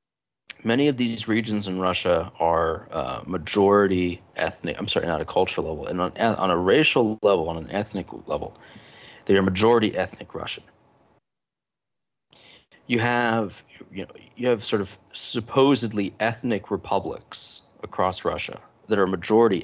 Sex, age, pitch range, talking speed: male, 30-49, 90-115 Hz, 145 wpm